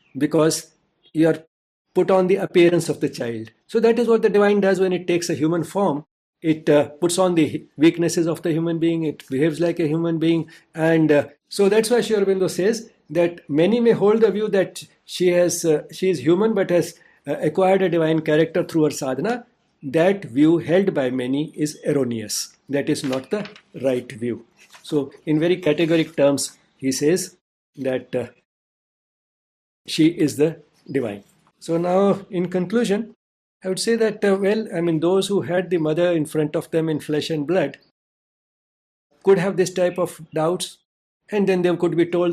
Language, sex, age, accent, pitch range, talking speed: English, male, 60-79, Indian, 150-185 Hz, 185 wpm